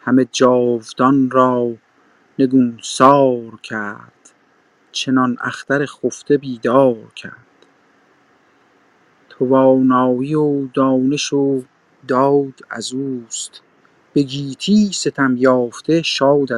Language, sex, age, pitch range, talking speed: Persian, male, 50-69, 130-150 Hz, 80 wpm